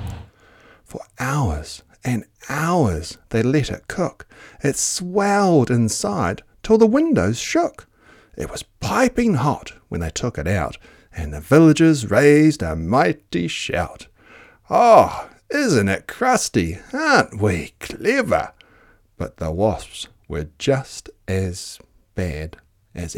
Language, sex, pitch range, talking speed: English, male, 90-140 Hz, 115 wpm